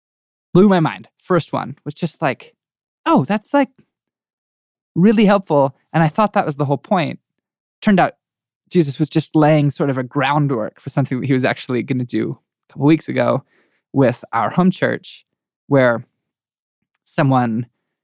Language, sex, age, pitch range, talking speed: English, male, 20-39, 130-165 Hz, 165 wpm